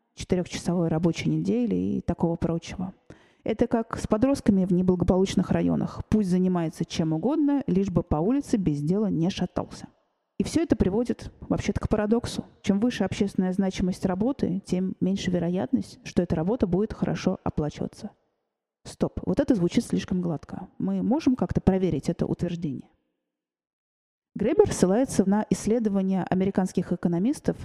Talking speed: 140 wpm